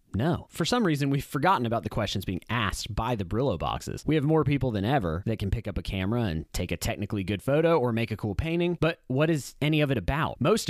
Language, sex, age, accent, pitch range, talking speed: English, male, 30-49, American, 100-135 Hz, 260 wpm